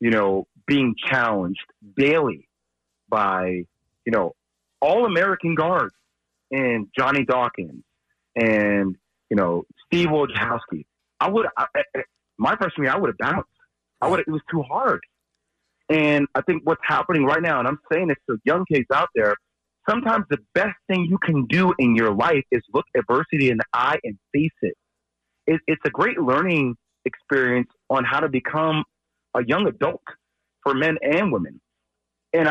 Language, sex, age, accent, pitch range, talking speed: English, male, 30-49, American, 105-160 Hz, 165 wpm